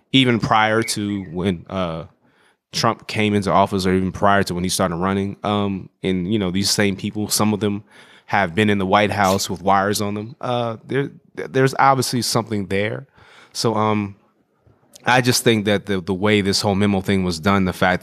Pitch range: 90-110 Hz